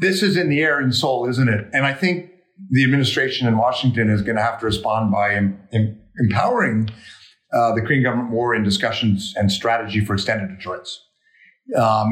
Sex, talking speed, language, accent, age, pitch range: male, 185 wpm, English, American, 50-69, 105-140 Hz